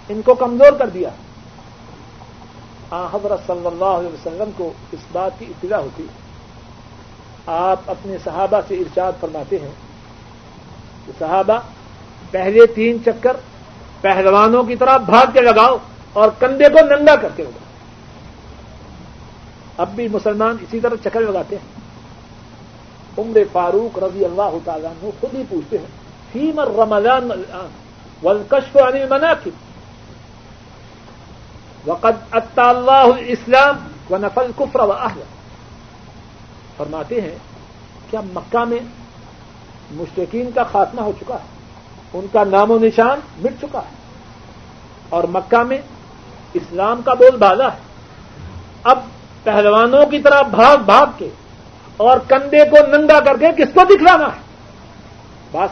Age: 60-79